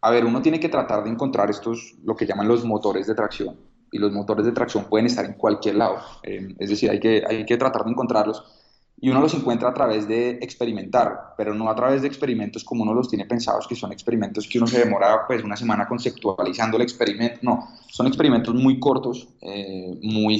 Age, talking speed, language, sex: 20-39, 220 wpm, Spanish, male